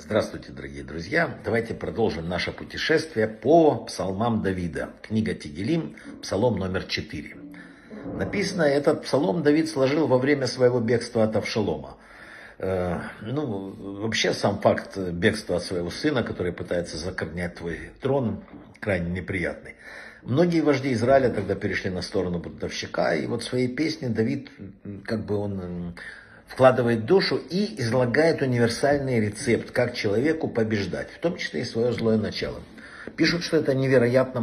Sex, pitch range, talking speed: male, 95-125 Hz, 140 wpm